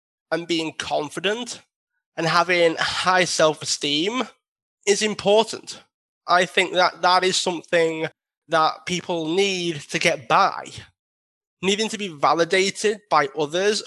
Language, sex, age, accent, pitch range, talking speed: English, male, 20-39, British, 160-190 Hz, 115 wpm